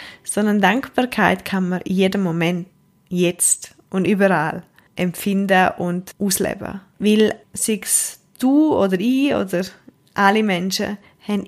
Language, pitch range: German, 190-225 Hz